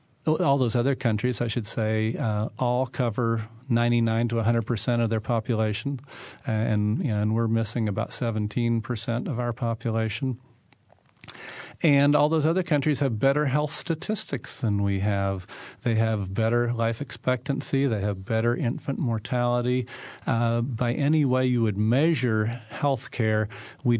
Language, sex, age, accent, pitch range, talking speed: English, male, 50-69, American, 110-130 Hz, 150 wpm